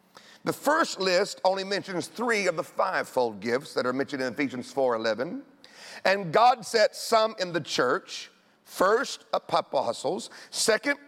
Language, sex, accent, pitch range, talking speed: English, male, American, 210-285 Hz, 145 wpm